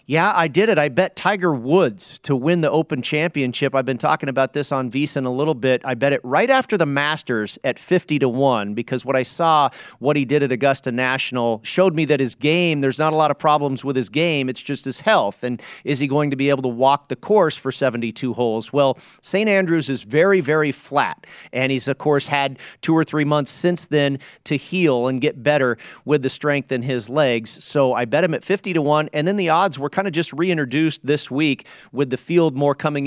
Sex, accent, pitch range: male, American, 130-155 Hz